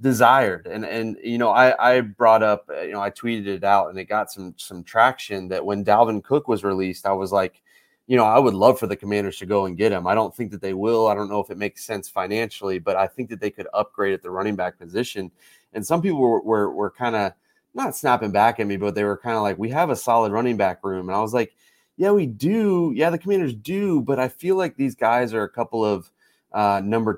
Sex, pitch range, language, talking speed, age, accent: male, 100-120 Hz, English, 260 wpm, 30-49, American